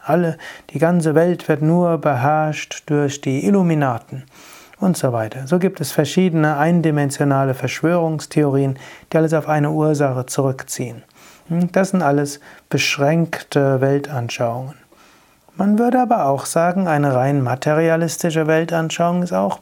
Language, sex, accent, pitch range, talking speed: German, male, German, 135-165 Hz, 125 wpm